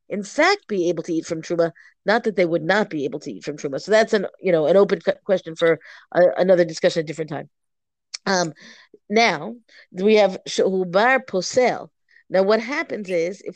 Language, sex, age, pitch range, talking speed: English, female, 50-69, 180-230 Hz, 210 wpm